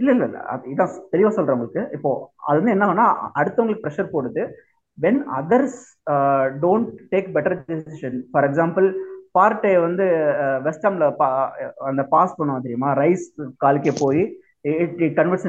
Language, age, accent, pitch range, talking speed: Tamil, 20-39, native, 135-180 Hz, 60 wpm